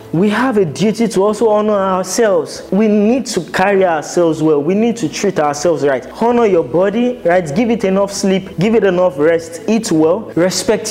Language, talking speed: English, 195 wpm